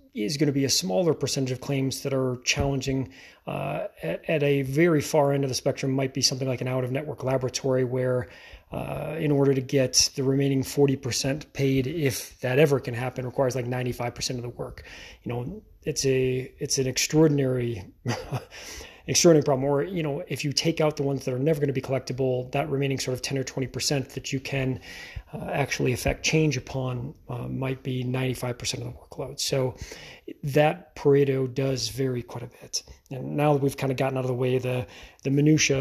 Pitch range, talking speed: 130-145 Hz, 205 wpm